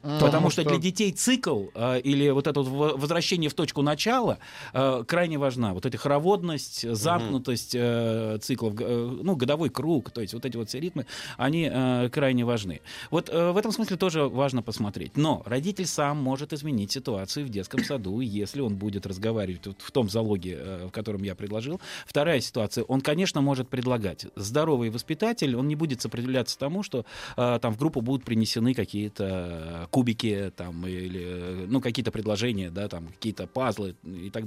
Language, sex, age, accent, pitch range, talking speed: Russian, male, 30-49, native, 105-145 Hz, 175 wpm